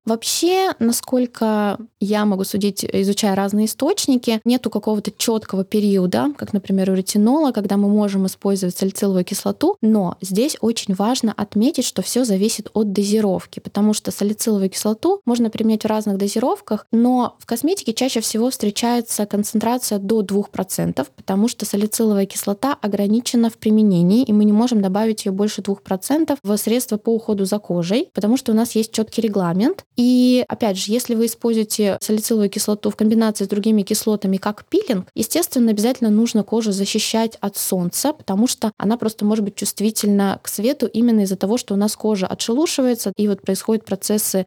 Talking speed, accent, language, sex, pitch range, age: 165 wpm, native, Russian, female, 200-235 Hz, 20-39